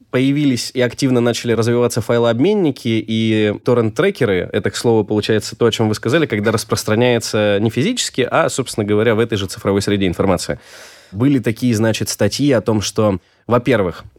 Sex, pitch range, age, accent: male, 110-135 Hz, 20-39, native